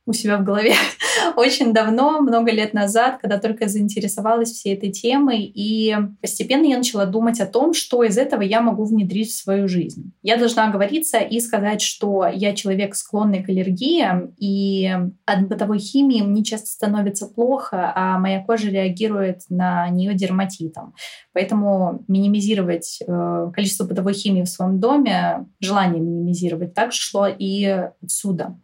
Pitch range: 190-220 Hz